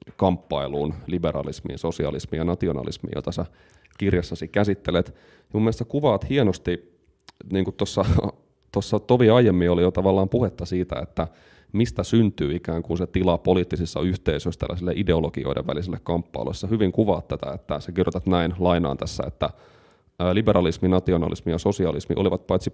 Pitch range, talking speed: 85-100 Hz, 145 wpm